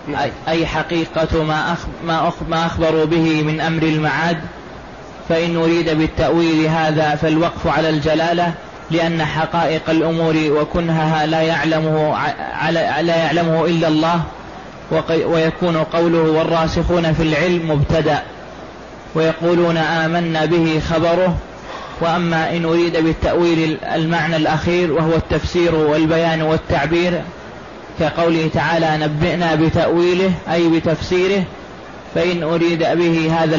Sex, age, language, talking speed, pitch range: male, 20-39, Arabic, 95 wpm, 160-170 Hz